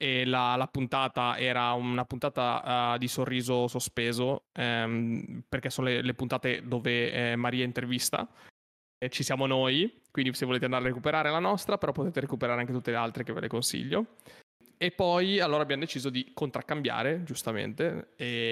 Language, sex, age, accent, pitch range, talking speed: Italian, male, 20-39, native, 125-145 Hz, 180 wpm